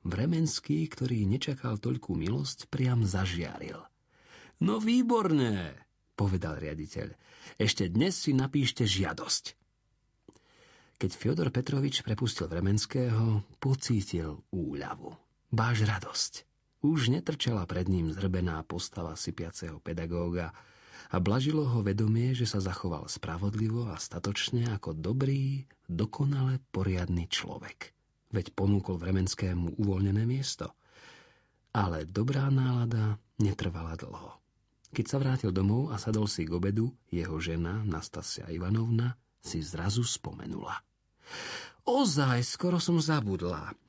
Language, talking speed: Slovak, 105 wpm